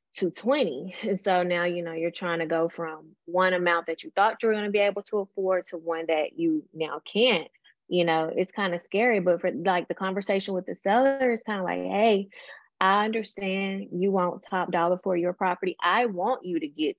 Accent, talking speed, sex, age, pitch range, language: American, 225 wpm, female, 20-39, 175-205 Hz, English